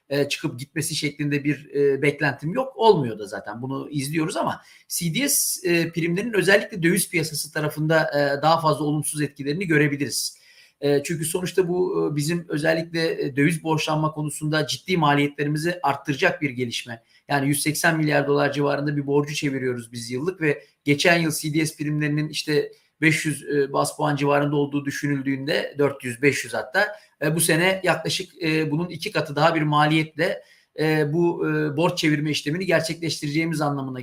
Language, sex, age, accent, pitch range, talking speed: Turkish, male, 40-59, native, 145-165 Hz, 135 wpm